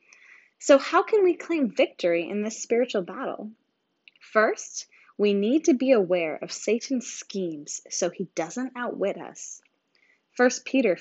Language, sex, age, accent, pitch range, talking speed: English, female, 10-29, American, 190-265 Hz, 140 wpm